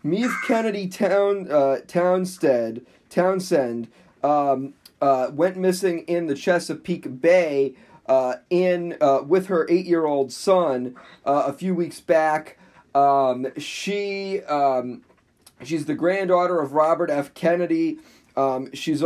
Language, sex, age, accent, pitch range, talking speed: English, male, 40-59, American, 130-170 Hz, 120 wpm